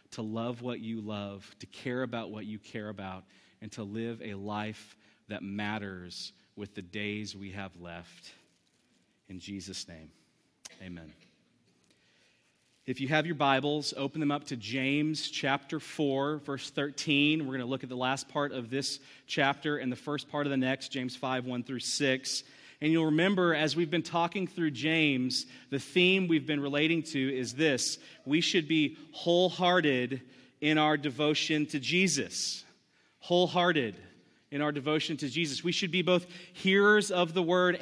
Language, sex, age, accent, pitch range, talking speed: English, male, 30-49, American, 130-175 Hz, 170 wpm